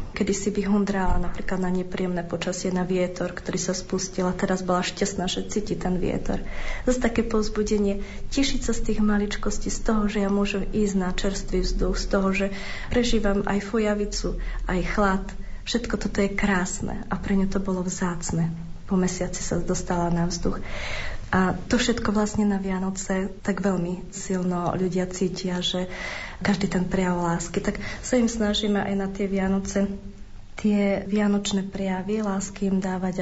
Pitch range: 180-200 Hz